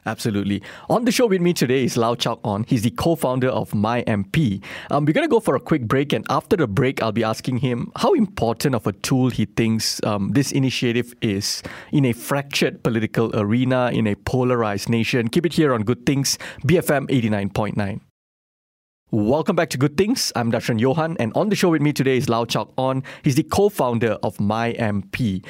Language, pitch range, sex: English, 115-150 Hz, male